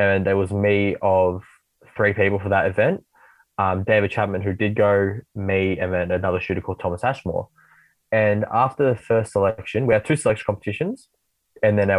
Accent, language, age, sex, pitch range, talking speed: Australian, English, 20-39, male, 95-110 Hz, 185 wpm